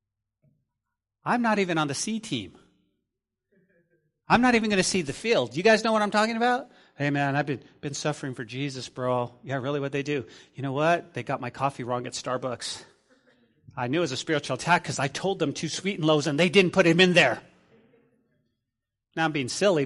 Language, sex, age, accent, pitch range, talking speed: English, male, 40-59, American, 120-185 Hz, 215 wpm